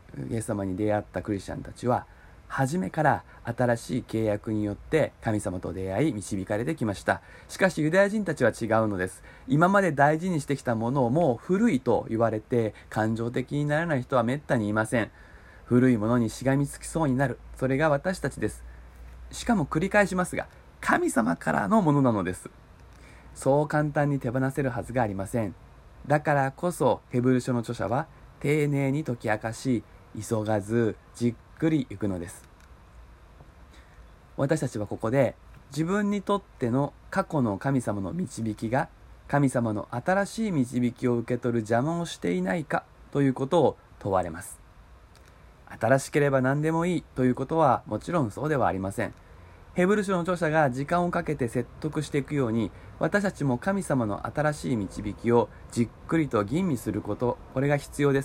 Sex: male